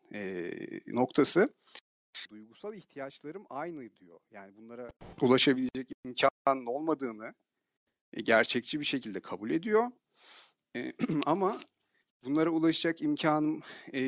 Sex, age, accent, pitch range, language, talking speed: male, 40-59, native, 130-175 Hz, Turkish, 100 wpm